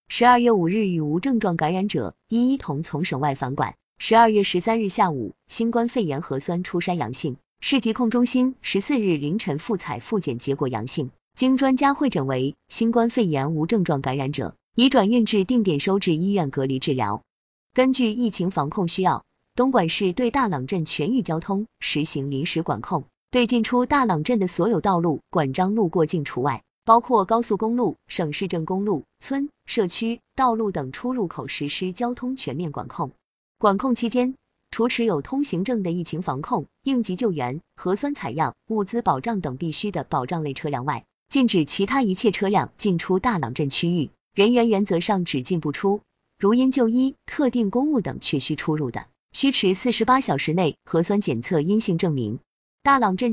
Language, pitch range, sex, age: Chinese, 155-235 Hz, female, 20-39